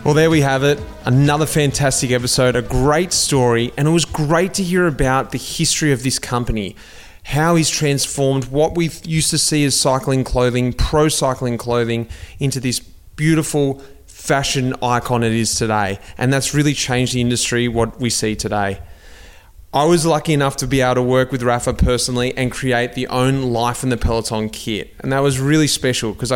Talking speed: 185 wpm